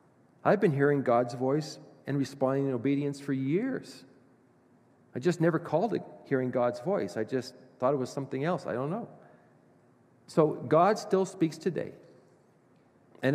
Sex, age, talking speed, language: male, 40-59, 155 wpm, English